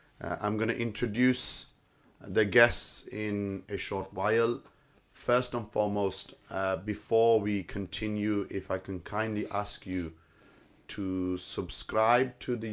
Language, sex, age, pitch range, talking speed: English, male, 30-49, 95-115 Hz, 130 wpm